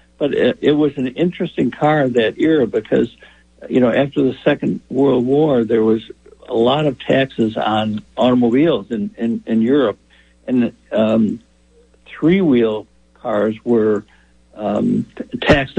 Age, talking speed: 60-79, 135 wpm